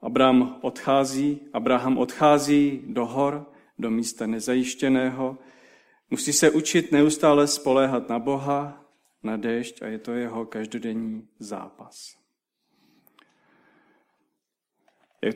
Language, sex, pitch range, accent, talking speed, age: Czech, male, 115-170 Hz, native, 100 wpm, 40-59